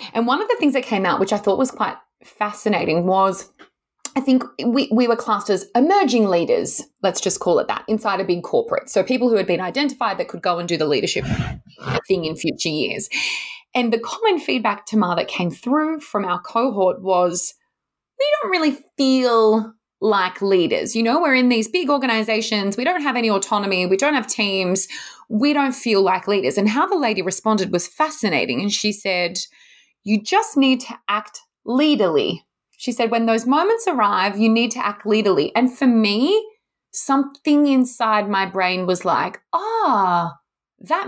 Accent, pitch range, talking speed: Australian, 200-270 Hz, 185 wpm